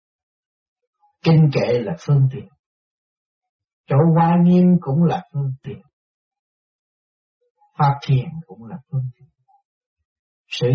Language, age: Vietnamese, 60-79